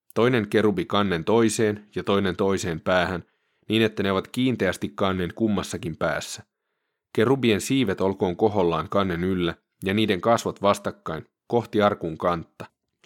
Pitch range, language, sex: 90-110 Hz, Finnish, male